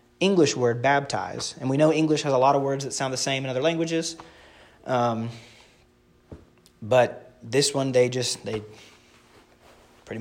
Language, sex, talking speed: English, male, 160 wpm